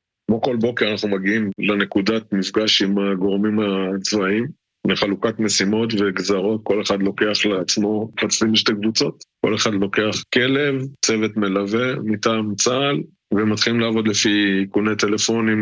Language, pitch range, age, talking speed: Hebrew, 105-150 Hz, 20-39, 130 wpm